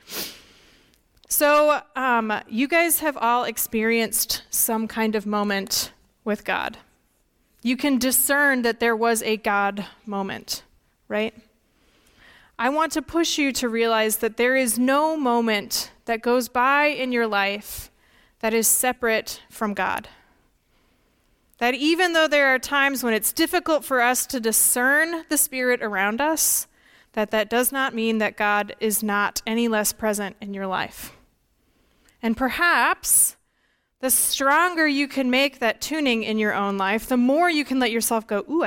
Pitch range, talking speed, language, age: 215-270 Hz, 155 wpm, English, 20-39